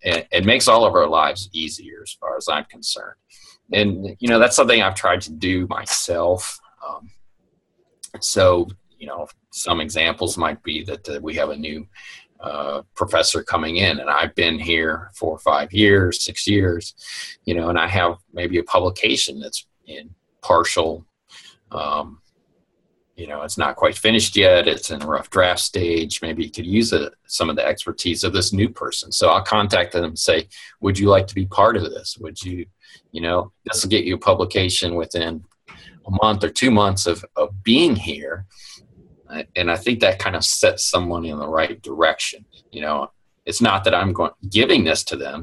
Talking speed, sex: 190 wpm, male